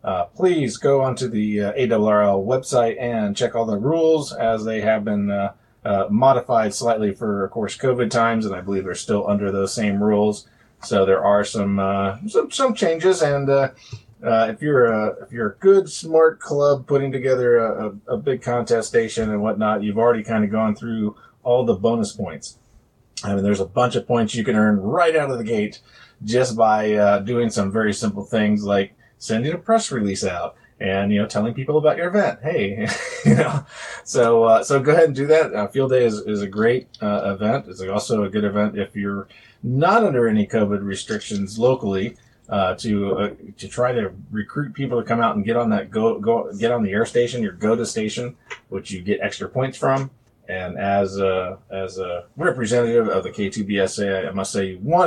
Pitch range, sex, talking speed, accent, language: 100-130 Hz, male, 205 wpm, American, English